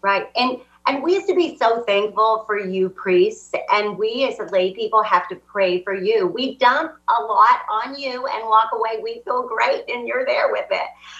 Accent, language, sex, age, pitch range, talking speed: American, English, female, 40-59, 175-250 Hz, 215 wpm